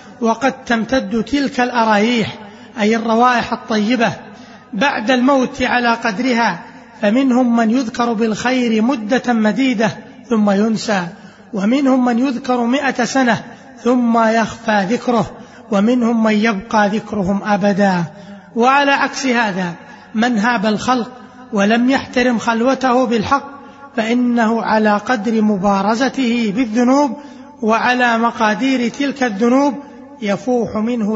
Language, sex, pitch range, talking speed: Arabic, male, 215-250 Hz, 100 wpm